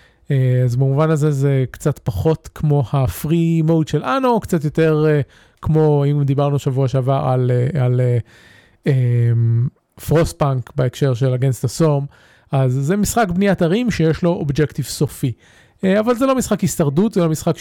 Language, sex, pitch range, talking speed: Hebrew, male, 140-190 Hz, 165 wpm